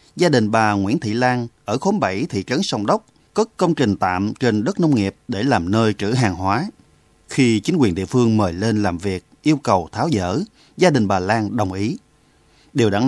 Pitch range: 100-135 Hz